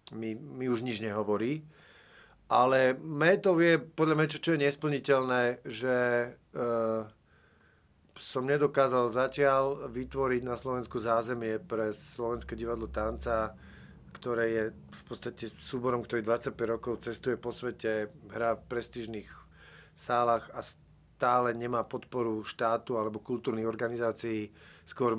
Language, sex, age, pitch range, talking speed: Slovak, male, 40-59, 110-125 Hz, 120 wpm